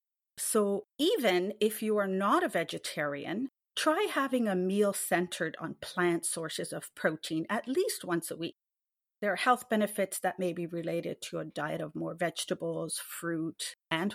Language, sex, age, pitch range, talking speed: English, female, 40-59, 175-240 Hz, 165 wpm